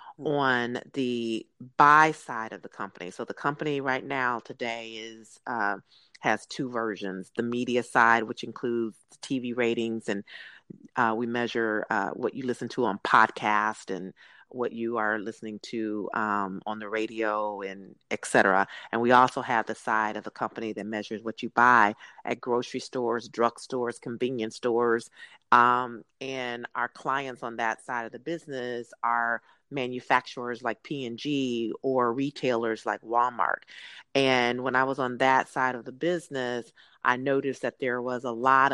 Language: English